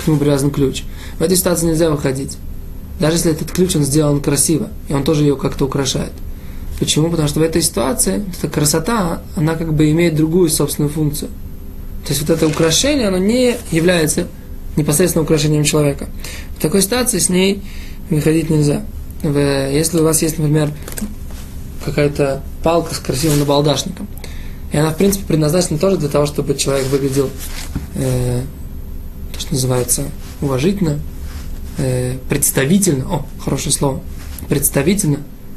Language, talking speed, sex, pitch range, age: Russian, 140 wpm, male, 140-165 Hz, 20-39